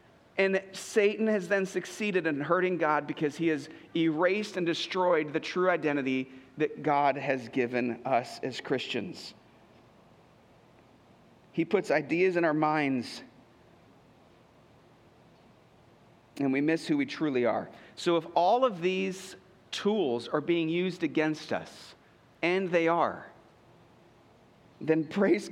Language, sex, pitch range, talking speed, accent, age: English, male, 155-195 Hz, 125 wpm, American, 40-59